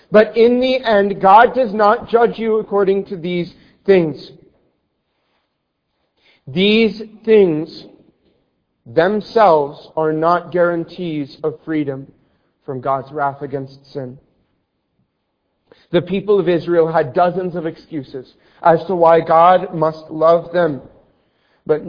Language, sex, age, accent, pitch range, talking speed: English, male, 40-59, American, 135-185 Hz, 115 wpm